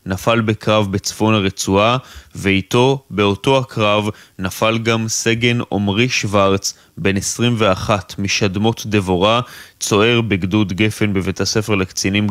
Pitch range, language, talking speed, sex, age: 100-120 Hz, Hebrew, 105 wpm, male, 20-39